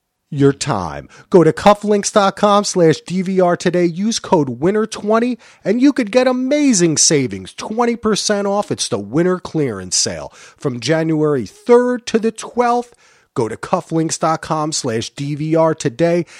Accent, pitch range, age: American, 115-185 Hz, 40-59